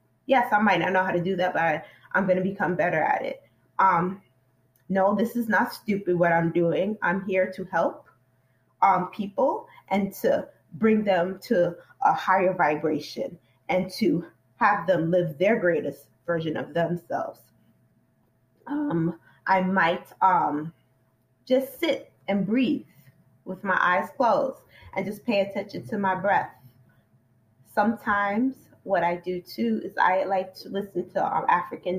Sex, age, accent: female, 20-39, American